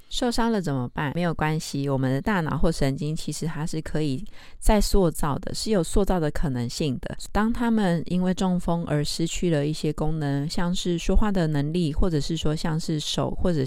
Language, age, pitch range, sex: Chinese, 20-39, 150-185 Hz, female